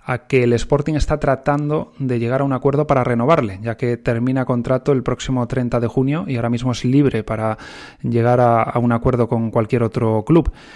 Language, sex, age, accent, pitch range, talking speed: Spanish, male, 20-39, Spanish, 120-135 Hz, 205 wpm